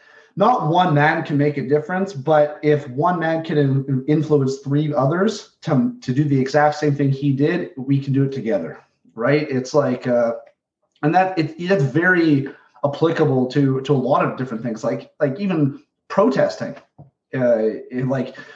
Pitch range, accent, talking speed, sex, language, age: 125-150 Hz, American, 165 wpm, male, English, 30-49